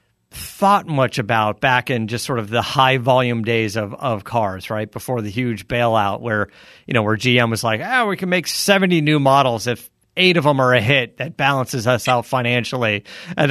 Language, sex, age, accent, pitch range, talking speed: English, male, 40-59, American, 120-155 Hz, 210 wpm